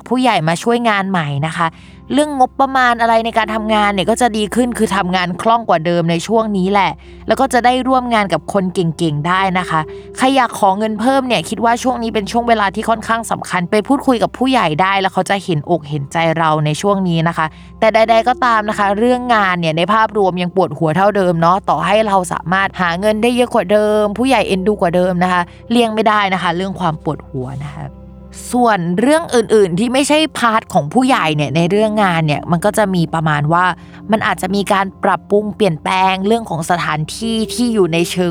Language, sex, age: Thai, female, 20-39